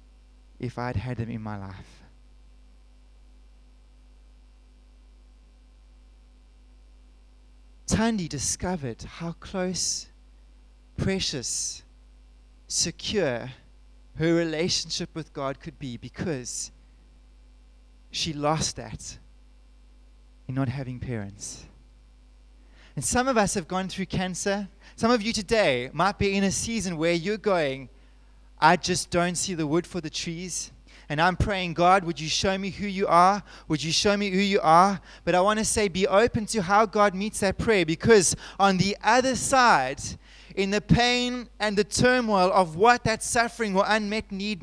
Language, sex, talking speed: English, male, 140 wpm